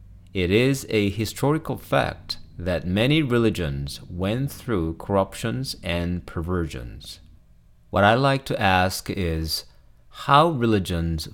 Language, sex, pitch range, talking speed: English, male, 75-115 Hz, 110 wpm